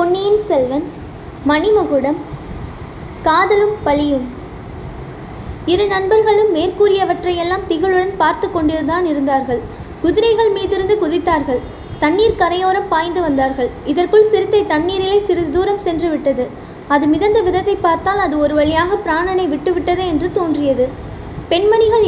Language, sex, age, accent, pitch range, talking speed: Tamil, female, 20-39, native, 310-385 Hz, 95 wpm